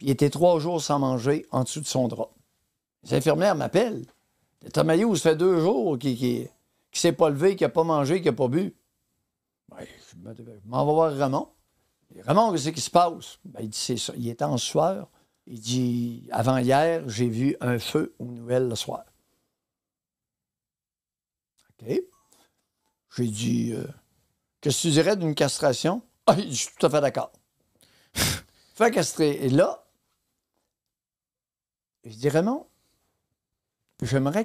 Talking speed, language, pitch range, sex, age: 165 wpm, French, 120-160 Hz, male, 60-79